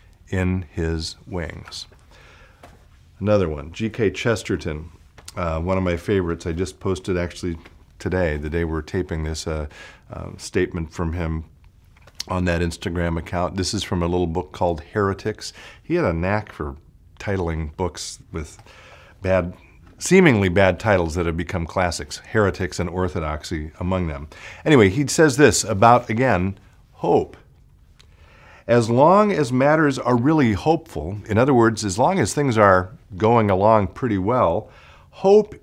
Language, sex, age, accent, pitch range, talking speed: English, male, 50-69, American, 85-120 Hz, 145 wpm